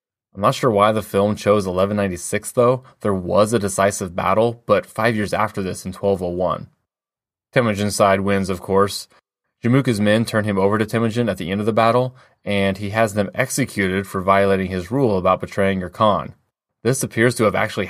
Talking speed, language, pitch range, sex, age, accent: 190 wpm, English, 100-120 Hz, male, 20-39, American